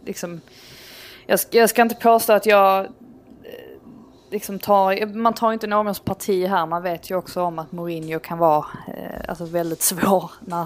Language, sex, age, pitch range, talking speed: Swedish, female, 20-39, 160-195 Hz, 170 wpm